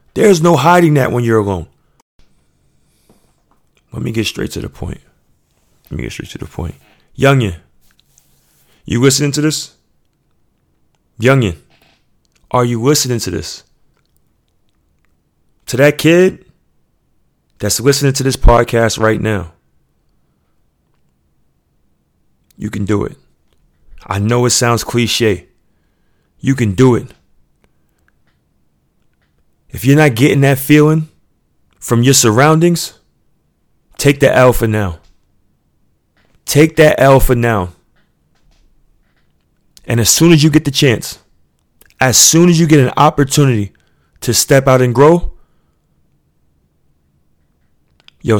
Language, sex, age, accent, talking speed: English, male, 30-49, American, 120 wpm